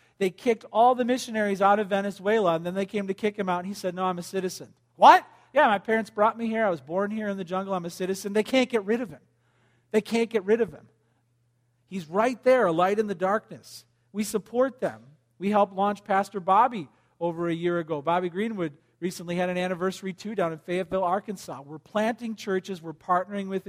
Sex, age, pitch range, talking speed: male, 40-59, 150-205 Hz, 225 wpm